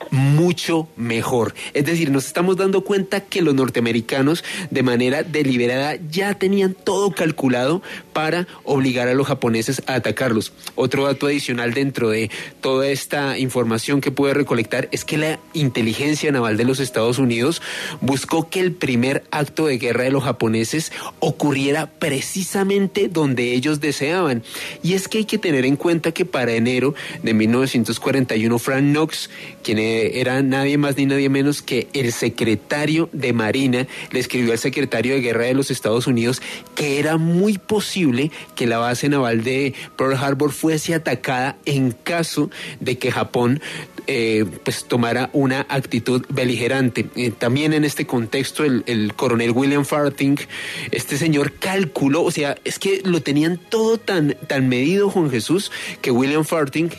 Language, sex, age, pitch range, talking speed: Spanish, male, 30-49, 125-155 Hz, 160 wpm